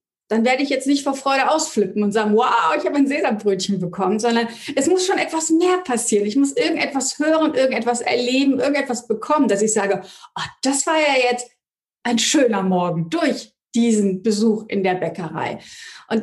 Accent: German